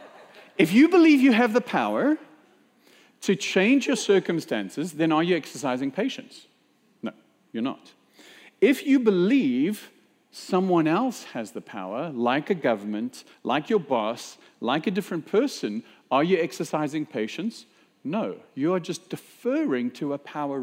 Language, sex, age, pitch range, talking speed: English, male, 50-69, 140-215 Hz, 145 wpm